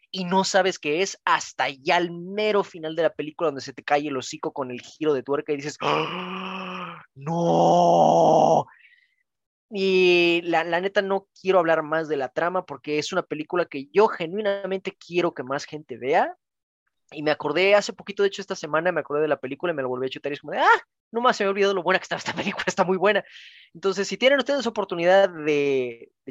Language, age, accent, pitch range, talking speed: Spanish, 20-39, Mexican, 150-200 Hz, 225 wpm